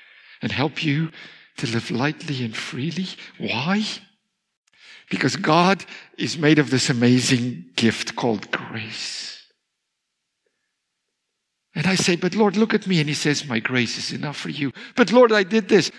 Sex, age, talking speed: male, 60-79, 155 wpm